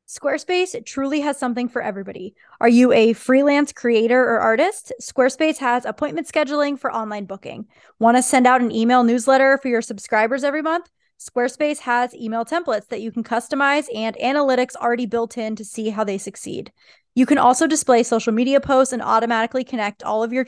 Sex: female